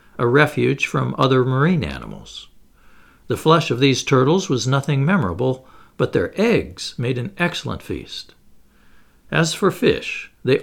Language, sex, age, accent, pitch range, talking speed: English, male, 60-79, American, 120-140 Hz, 140 wpm